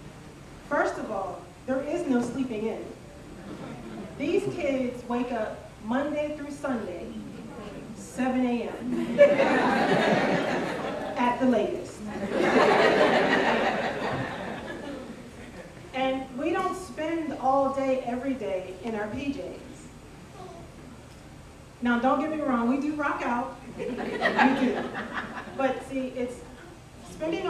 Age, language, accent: 30-49, English, American